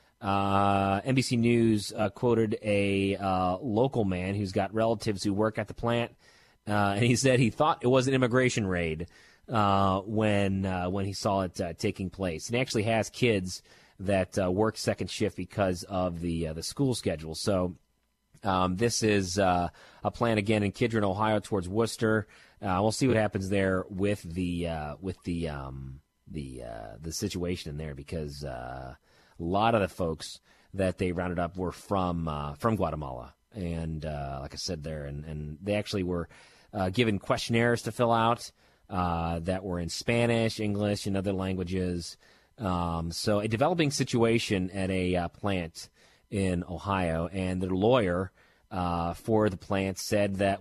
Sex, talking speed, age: male, 175 wpm, 30-49